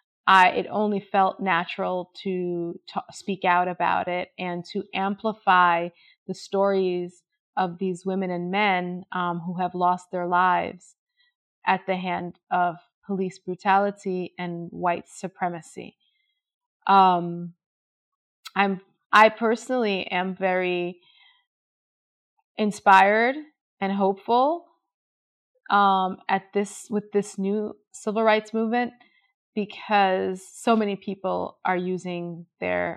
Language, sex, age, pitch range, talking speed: French, female, 20-39, 180-205 Hz, 110 wpm